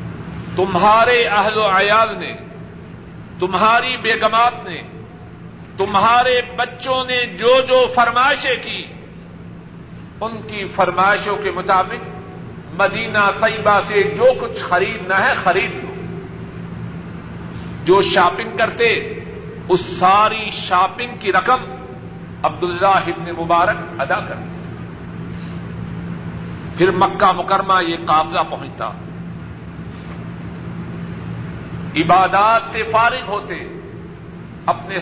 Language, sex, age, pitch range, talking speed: Urdu, male, 50-69, 180-230 Hz, 95 wpm